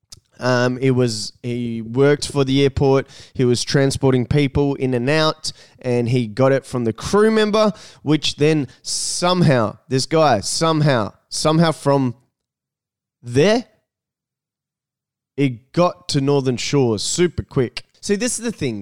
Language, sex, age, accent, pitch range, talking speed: English, male, 20-39, Australian, 115-145 Hz, 140 wpm